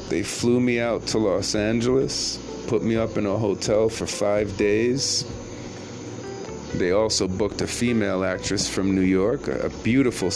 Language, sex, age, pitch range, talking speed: English, male, 40-59, 95-115 Hz, 155 wpm